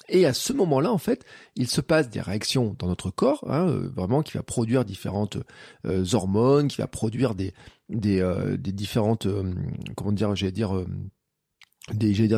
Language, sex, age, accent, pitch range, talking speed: French, male, 40-59, French, 105-135 Hz, 185 wpm